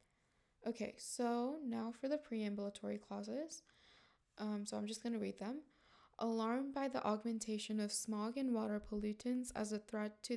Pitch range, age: 205-235 Hz, 20-39